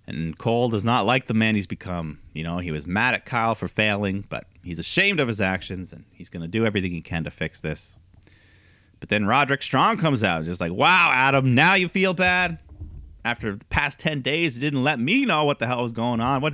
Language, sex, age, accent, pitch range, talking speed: English, male, 30-49, American, 90-115 Hz, 240 wpm